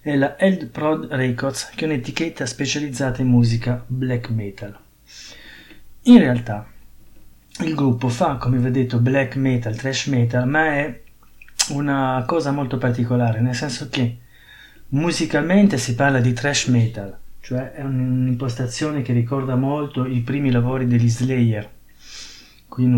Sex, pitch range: male, 120-140 Hz